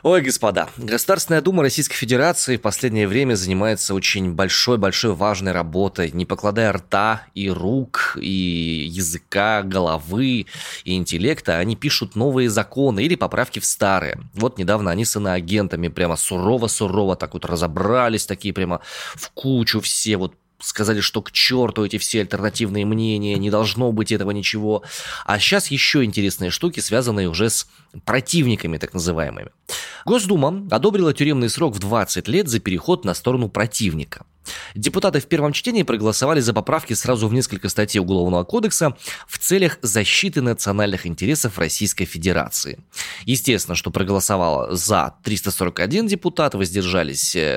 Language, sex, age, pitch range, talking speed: Russian, male, 20-39, 95-130 Hz, 140 wpm